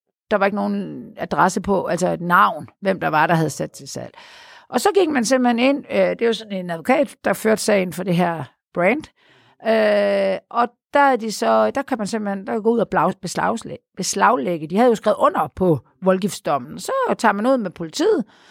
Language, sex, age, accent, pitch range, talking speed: Danish, female, 50-69, native, 180-235 Hz, 205 wpm